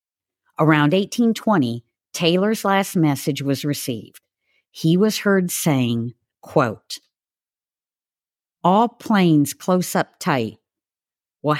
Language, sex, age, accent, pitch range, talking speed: English, female, 50-69, American, 135-185 Hz, 95 wpm